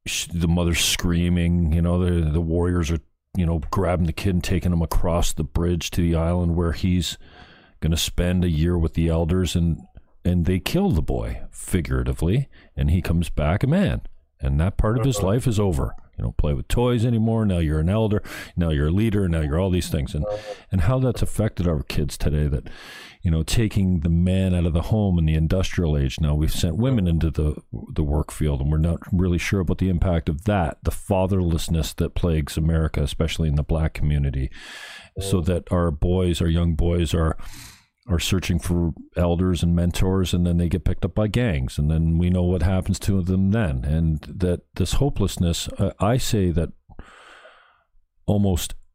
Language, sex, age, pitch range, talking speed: English, male, 40-59, 80-95 Hz, 200 wpm